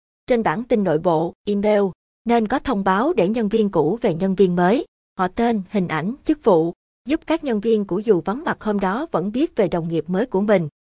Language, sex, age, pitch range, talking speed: Vietnamese, female, 20-39, 175-225 Hz, 230 wpm